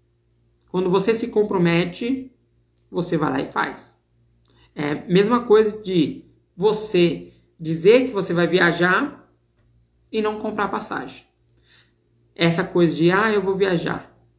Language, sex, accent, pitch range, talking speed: Portuguese, male, Brazilian, 145-230 Hz, 130 wpm